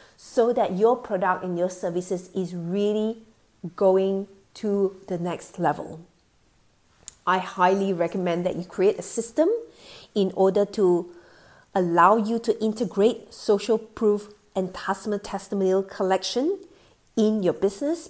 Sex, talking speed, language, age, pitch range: female, 125 wpm, English, 40-59, 185-225 Hz